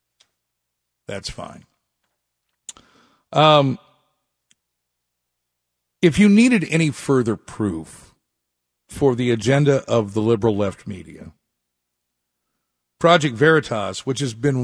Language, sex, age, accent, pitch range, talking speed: English, male, 50-69, American, 90-135 Hz, 90 wpm